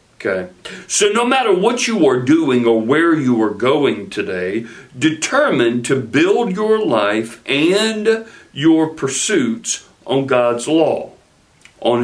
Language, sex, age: English, male, 60-79